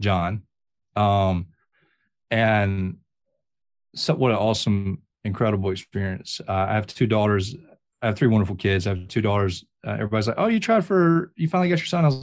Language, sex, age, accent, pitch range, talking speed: English, male, 30-49, American, 100-115 Hz, 175 wpm